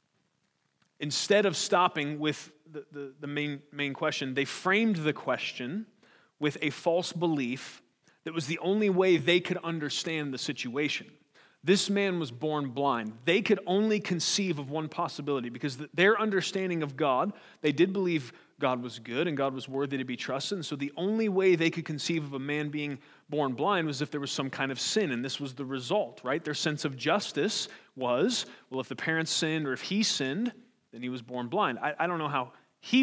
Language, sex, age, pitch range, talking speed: English, male, 30-49, 145-185 Hz, 200 wpm